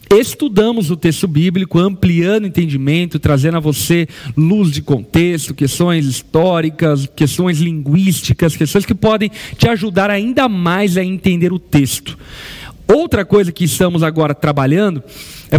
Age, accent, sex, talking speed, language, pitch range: 40-59, Brazilian, male, 135 wpm, Portuguese, 155-200 Hz